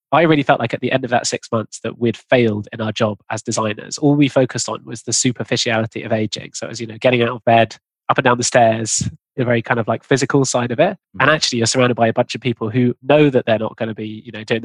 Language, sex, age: English, male, 20-39